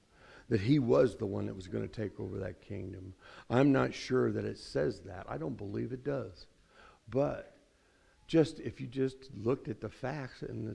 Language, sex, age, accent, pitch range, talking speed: English, male, 60-79, American, 105-140 Hz, 190 wpm